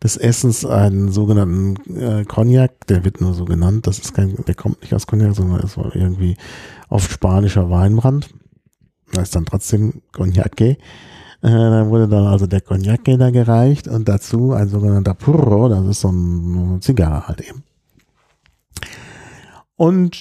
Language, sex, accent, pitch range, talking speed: German, male, German, 100-125 Hz, 160 wpm